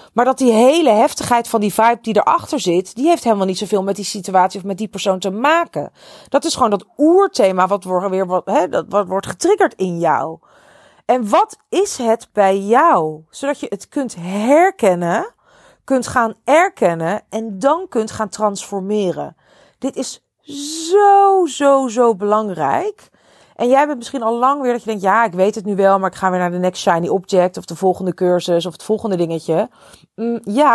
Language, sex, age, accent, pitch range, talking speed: Dutch, female, 40-59, Dutch, 190-280 Hz, 185 wpm